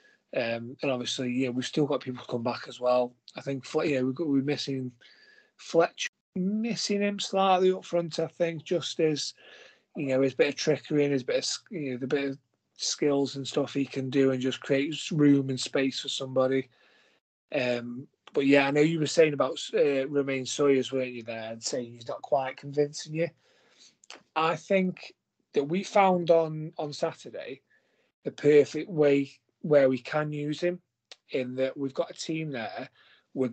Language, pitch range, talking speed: English, 130-160 Hz, 190 wpm